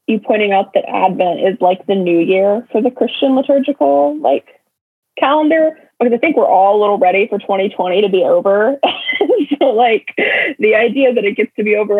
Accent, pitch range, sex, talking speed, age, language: American, 200-260 Hz, female, 195 wpm, 20-39, English